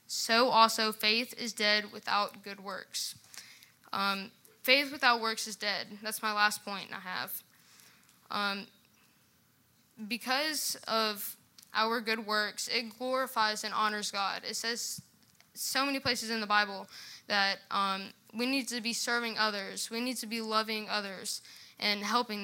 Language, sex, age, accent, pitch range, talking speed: English, female, 10-29, American, 205-235 Hz, 145 wpm